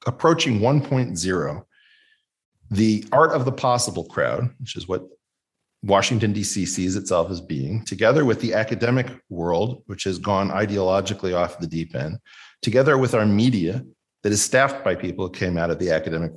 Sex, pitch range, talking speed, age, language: male, 100-145 Hz, 165 wpm, 40-59, English